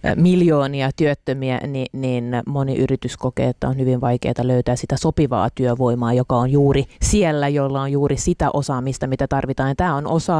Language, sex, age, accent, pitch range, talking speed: Finnish, female, 30-49, native, 135-160 Hz, 175 wpm